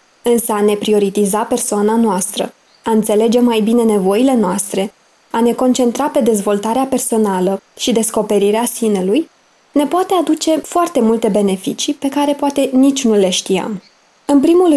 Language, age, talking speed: Romanian, 20-39, 145 wpm